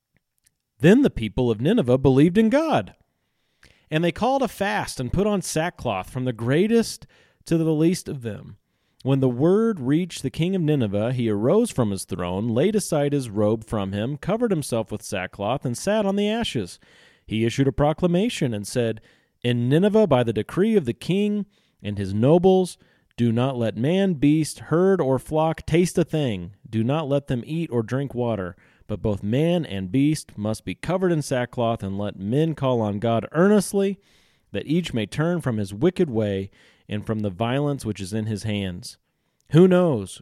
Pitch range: 105-160 Hz